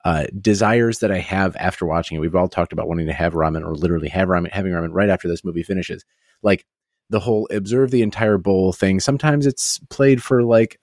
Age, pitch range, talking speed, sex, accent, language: 30-49, 90-115 Hz, 220 wpm, male, American, English